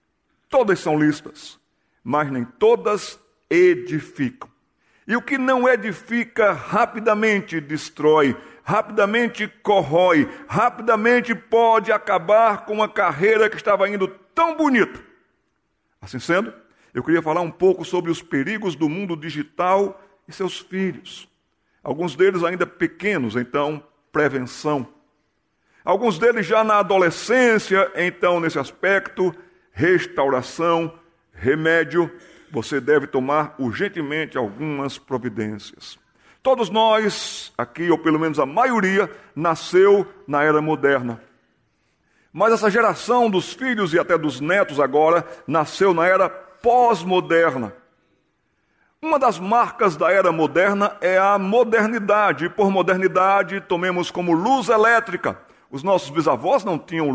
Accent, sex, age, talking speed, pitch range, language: Brazilian, male, 60-79, 120 wpm, 155-215 Hz, Portuguese